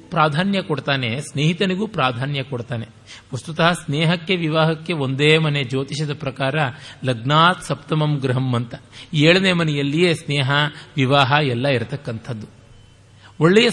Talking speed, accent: 100 wpm, native